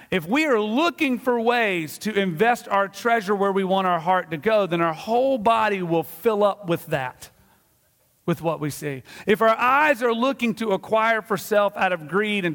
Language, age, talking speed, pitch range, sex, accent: English, 40-59, 205 wpm, 165-210 Hz, male, American